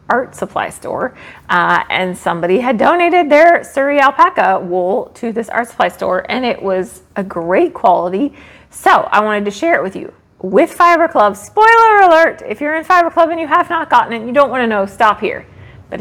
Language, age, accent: English, 30-49, American